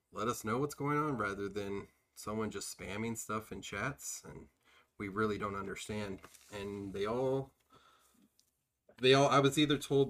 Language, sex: English, male